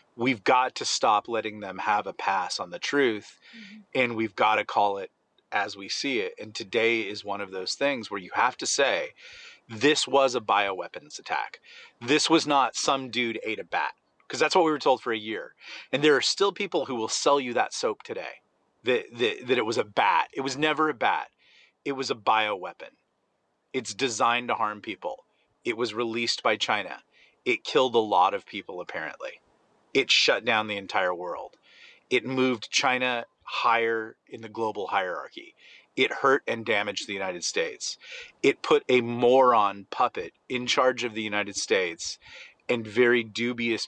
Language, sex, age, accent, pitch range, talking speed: English, male, 30-49, American, 115-190 Hz, 185 wpm